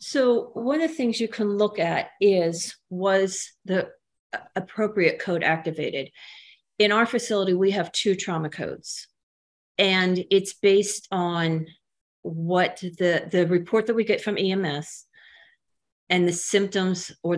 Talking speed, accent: 140 wpm, American